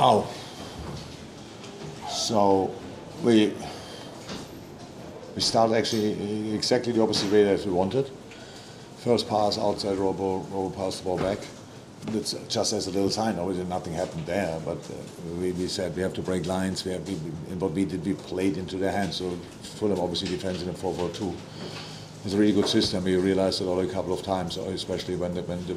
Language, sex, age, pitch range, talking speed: English, male, 50-69, 90-100 Hz, 170 wpm